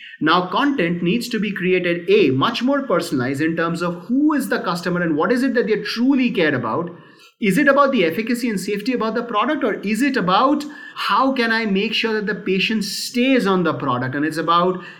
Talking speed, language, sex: 220 wpm, English, male